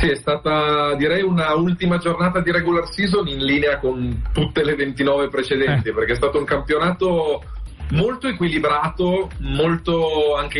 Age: 30-49